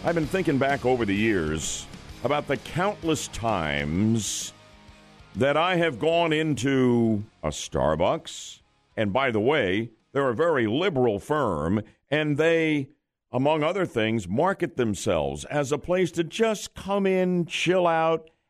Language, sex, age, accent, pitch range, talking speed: English, male, 60-79, American, 115-155 Hz, 140 wpm